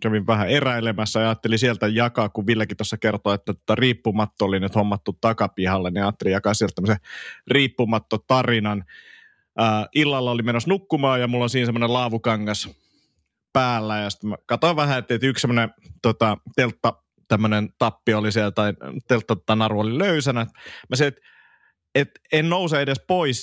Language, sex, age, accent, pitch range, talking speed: Finnish, male, 30-49, native, 110-130 Hz, 150 wpm